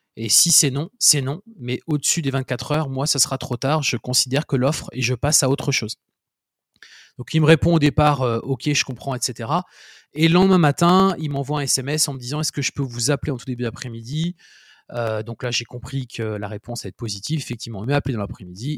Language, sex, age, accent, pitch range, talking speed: French, male, 30-49, French, 125-170 Hz, 245 wpm